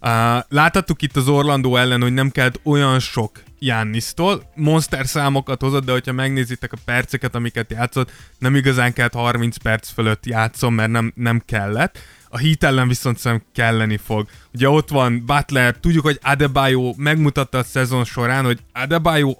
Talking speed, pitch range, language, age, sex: 165 wpm, 120-140 Hz, Hungarian, 20-39, male